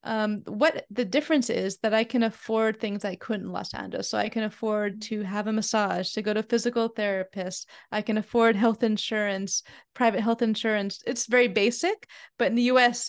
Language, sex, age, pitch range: English, female, 20-39, 195-240 Hz